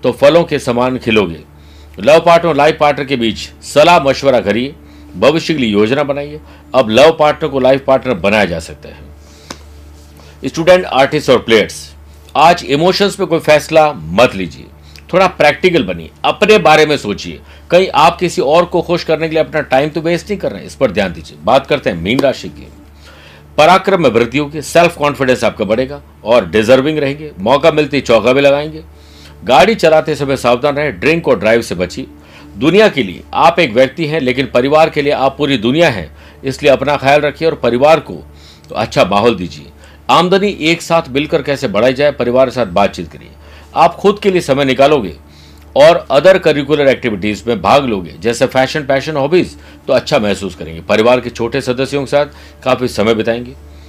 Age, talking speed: 60-79, 185 wpm